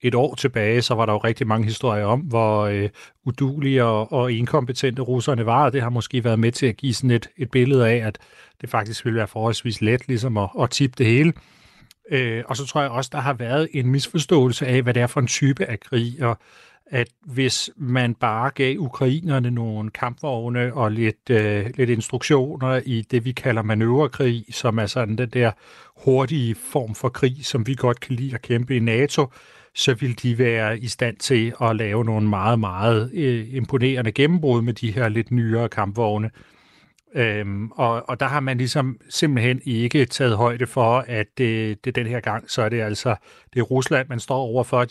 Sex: male